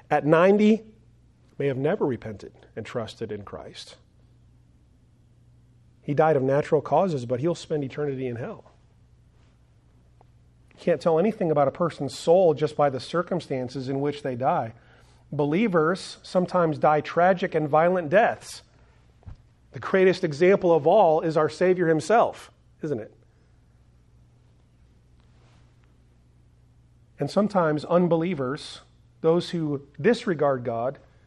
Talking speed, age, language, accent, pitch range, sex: 115 wpm, 40-59, English, American, 125-175 Hz, male